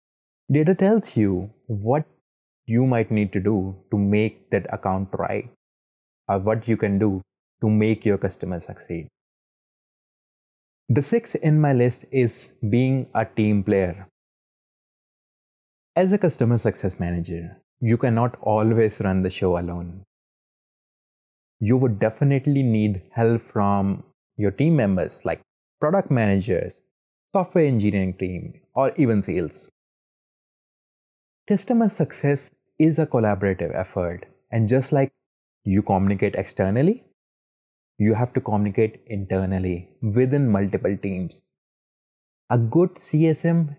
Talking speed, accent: 120 wpm, Indian